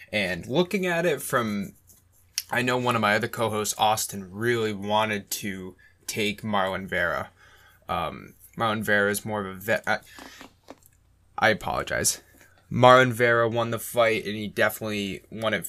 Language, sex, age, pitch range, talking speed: English, male, 20-39, 100-115 Hz, 155 wpm